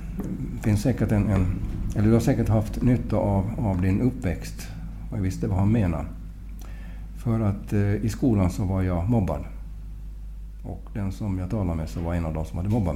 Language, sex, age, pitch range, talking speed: Swedish, male, 60-79, 85-105 Hz, 195 wpm